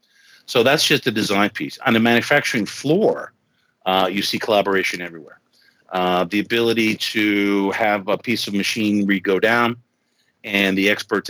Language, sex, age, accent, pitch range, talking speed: English, male, 50-69, American, 95-110 Hz, 155 wpm